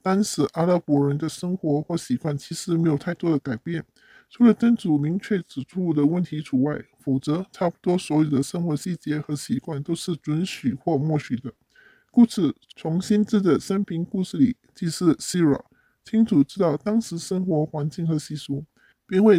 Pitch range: 145-185 Hz